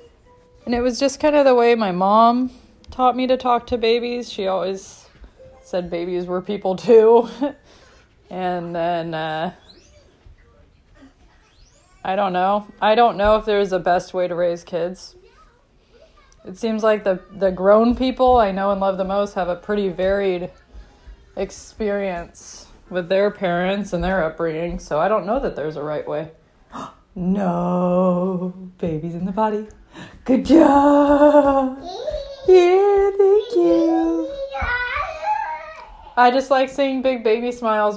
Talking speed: 140 wpm